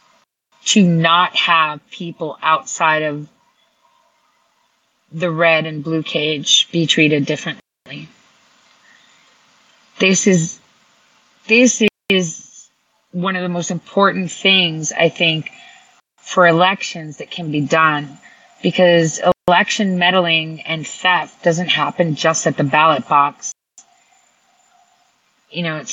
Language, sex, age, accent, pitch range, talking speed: English, female, 30-49, American, 155-185 Hz, 105 wpm